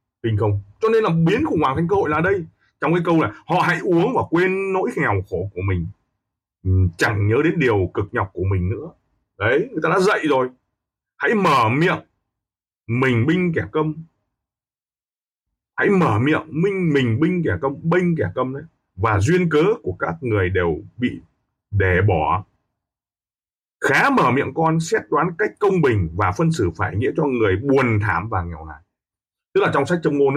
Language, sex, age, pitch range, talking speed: Vietnamese, male, 30-49, 105-175 Hz, 190 wpm